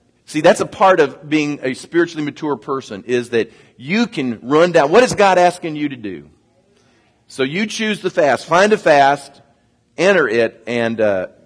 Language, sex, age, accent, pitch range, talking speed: English, male, 40-59, American, 130-175 Hz, 185 wpm